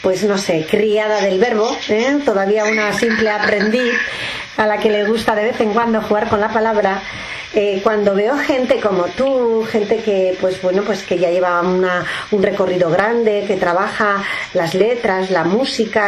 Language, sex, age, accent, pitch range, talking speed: English, female, 40-59, Spanish, 195-235 Hz, 175 wpm